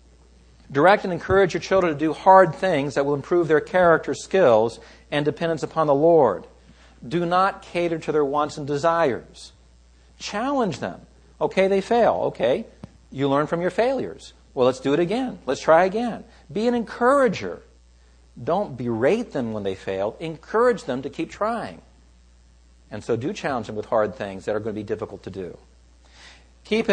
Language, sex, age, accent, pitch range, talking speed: English, male, 50-69, American, 100-170 Hz, 175 wpm